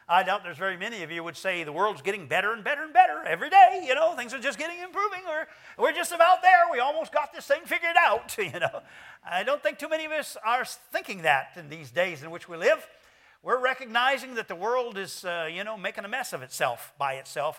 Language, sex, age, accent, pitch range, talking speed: English, male, 50-69, American, 155-245 Hz, 250 wpm